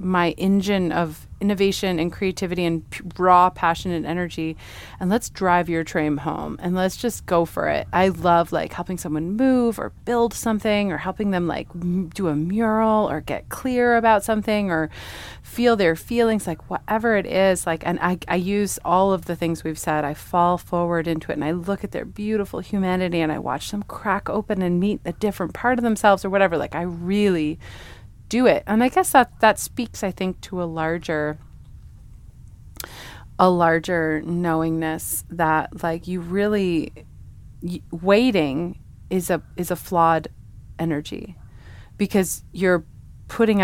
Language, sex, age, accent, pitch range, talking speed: English, female, 30-49, American, 165-200 Hz, 170 wpm